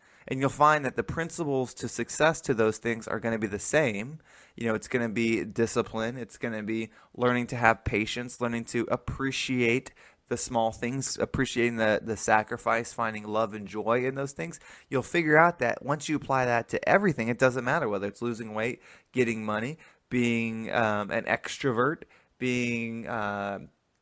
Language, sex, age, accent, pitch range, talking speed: English, male, 20-39, American, 115-135 Hz, 185 wpm